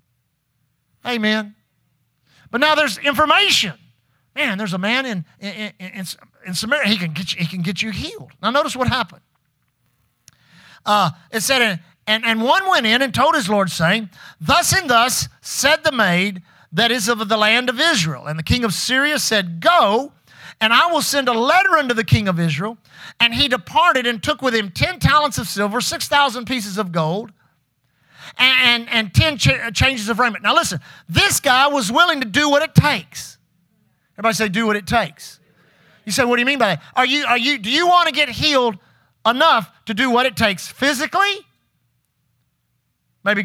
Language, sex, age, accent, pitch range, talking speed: English, male, 50-69, American, 180-275 Hz, 185 wpm